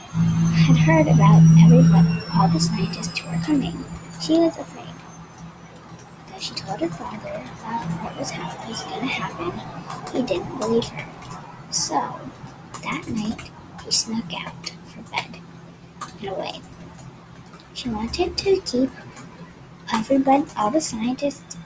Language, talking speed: English, 125 wpm